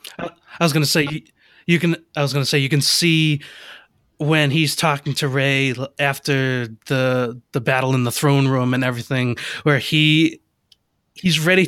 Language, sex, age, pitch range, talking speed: English, male, 30-49, 130-150 Hz, 165 wpm